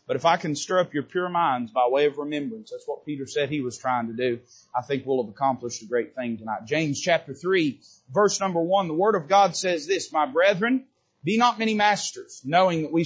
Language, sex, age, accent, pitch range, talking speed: English, male, 30-49, American, 155-205 Hz, 240 wpm